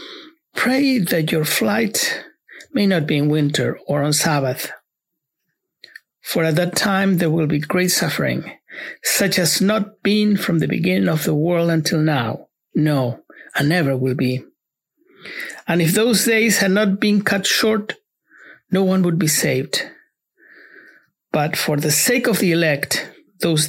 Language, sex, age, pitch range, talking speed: English, male, 60-79, 160-215 Hz, 150 wpm